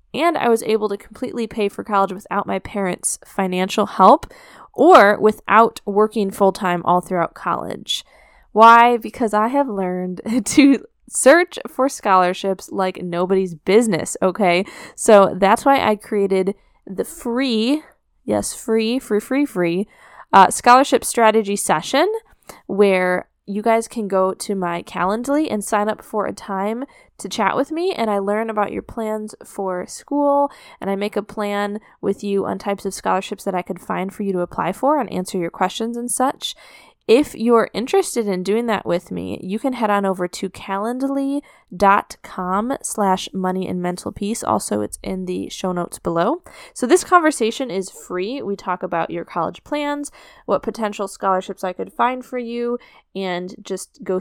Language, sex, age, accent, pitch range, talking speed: English, female, 10-29, American, 190-235 Hz, 165 wpm